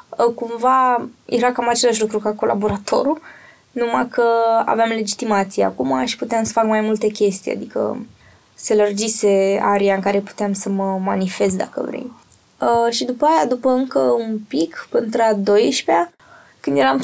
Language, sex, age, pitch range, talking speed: Romanian, female, 20-39, 200-240 Hz, 155 wpm